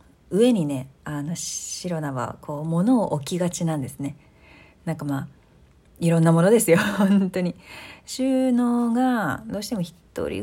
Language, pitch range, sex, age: Japanese, 150-220 Hz, female, 40-59